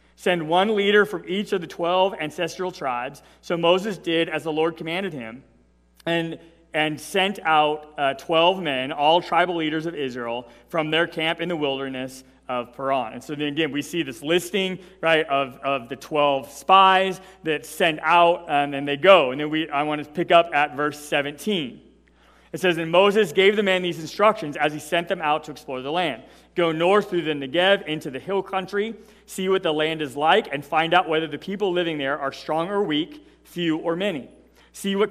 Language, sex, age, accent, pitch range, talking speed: English, male, 40-59, American, 150-185 Hz, 205 wpm